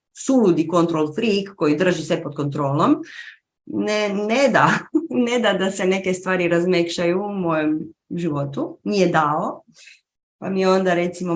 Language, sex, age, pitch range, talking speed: Croatian, female, 30-49, 160-215 Hz, 150 wpm